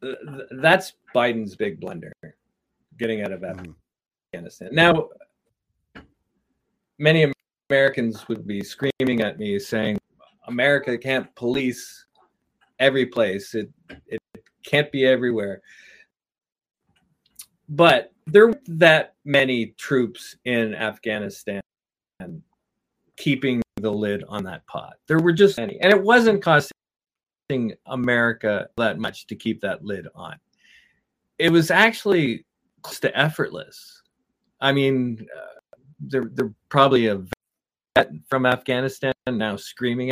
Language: English